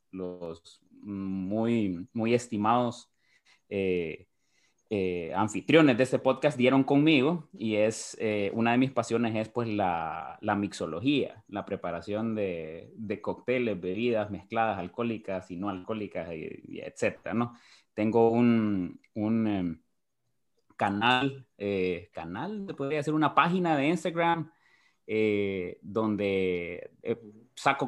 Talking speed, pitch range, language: 120 wpm, 100-120 Hz, Spanish